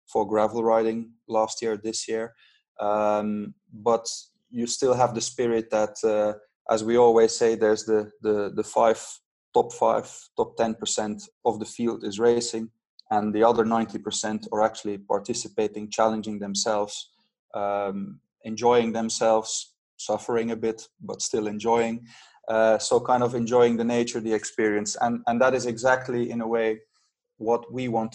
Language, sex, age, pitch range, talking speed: English, male, 20-39, 105-120 Hz, 155 wpm